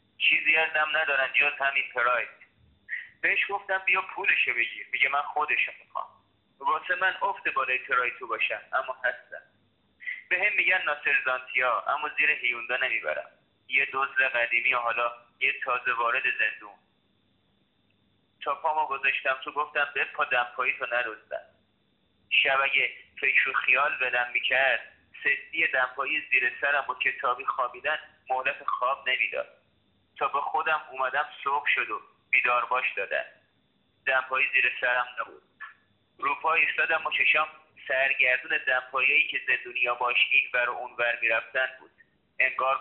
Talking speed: 135 wpm